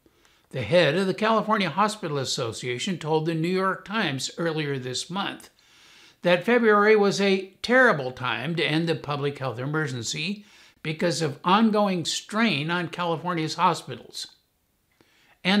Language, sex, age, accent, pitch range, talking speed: English, male, 60-79, American, 145-195 Hz, 135 wpm